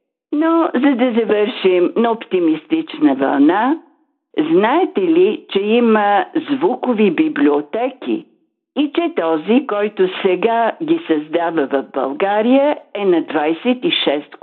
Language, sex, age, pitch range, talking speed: Bulgarian, female, 50-69, 185-305 Hz, 105 wpm